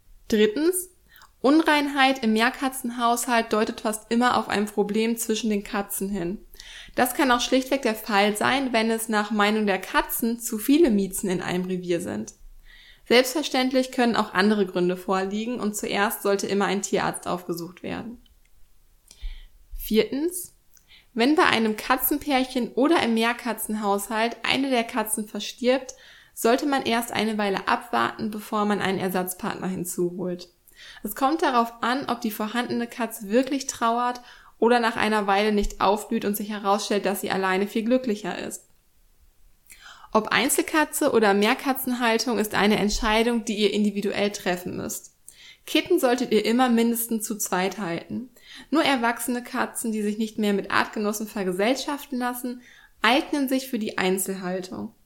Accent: German